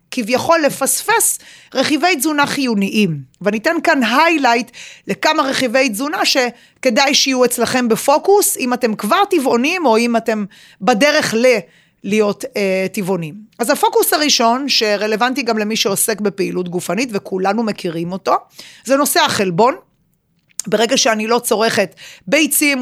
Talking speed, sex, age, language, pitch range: 120 wpm, female, 30-49, Hebrew, 205-270 Hz